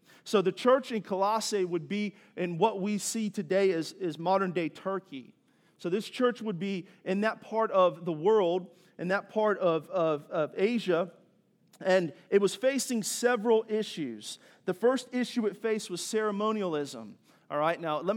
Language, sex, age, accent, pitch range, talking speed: English, male, 40-59, American, 175-220 Hz, 170 wpm